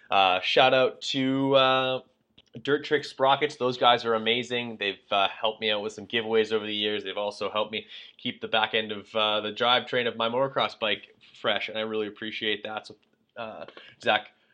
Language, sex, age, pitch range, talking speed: English, male, 20-39, 105-130 Hz, 200 wpm